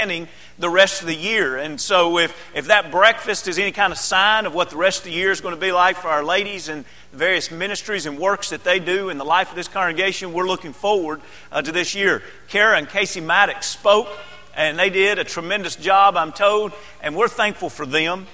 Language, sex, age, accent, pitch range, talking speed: English, male, 40-59, American, 155-190 Hz, 230 wpm